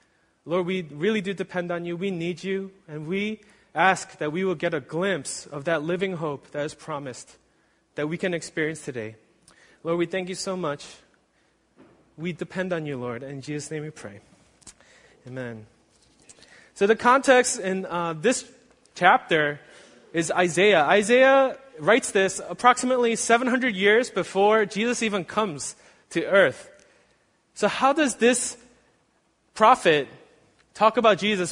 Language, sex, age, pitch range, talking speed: English, male, 20-39, 170-225 Hz, 145 wpm